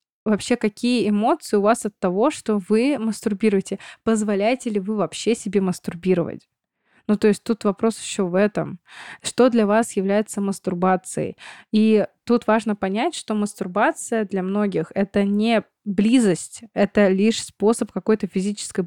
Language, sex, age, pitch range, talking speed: Russian, female, 20-39, 190-220 Hz, 145 wpm